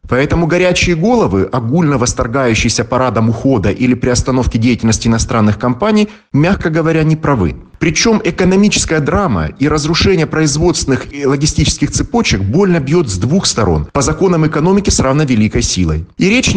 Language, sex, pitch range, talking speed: Russian, male, 115-175 Hz, 140 wpm